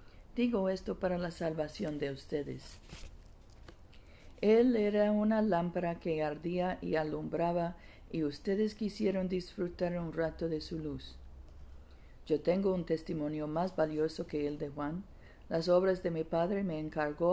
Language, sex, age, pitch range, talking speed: Spanish, female, 50-69, 145-185 Hz, 140 wpm